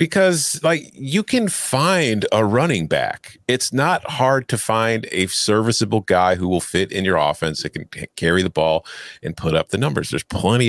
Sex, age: male, 40-59